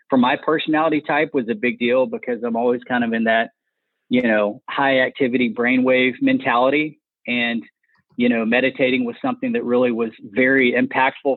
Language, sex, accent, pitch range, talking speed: English, male, American, 120-145 Hz, 170 wpm